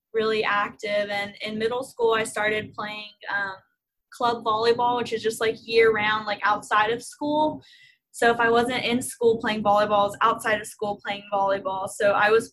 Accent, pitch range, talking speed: American, 210-240 Hz, 185 wpm